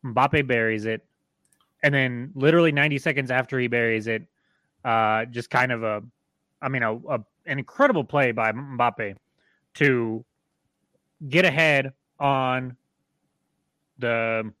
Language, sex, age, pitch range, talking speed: English, male, 30-49, 120-155 Hz, 125 wpm